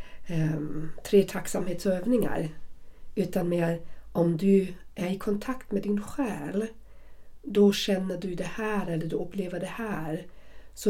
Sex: female